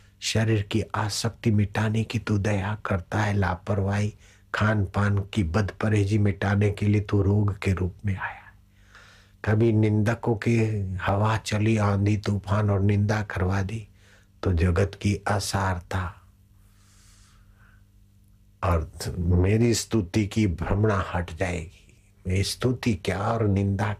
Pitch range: 100-110 Hz